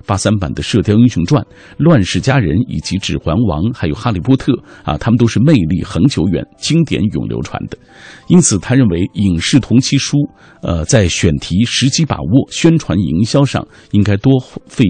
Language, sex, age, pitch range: Chinese, male, 50-69, 95-135 Hz